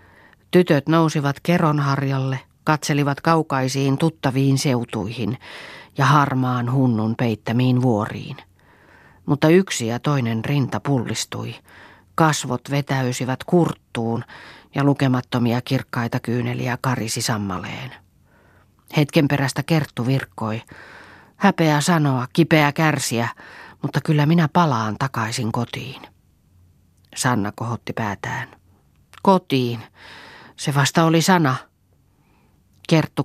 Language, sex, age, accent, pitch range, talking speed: Finnish, female, 40-59, native, 115-150 Hz, 90 wpm